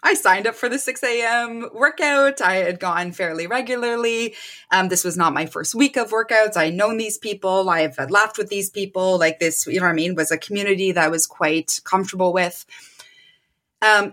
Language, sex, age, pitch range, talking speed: English, female, 20-39, 175-230 Hz, 205 wpm